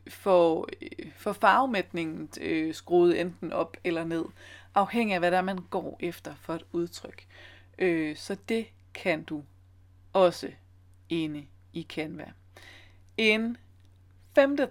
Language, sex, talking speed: Danish, female, 115 wpm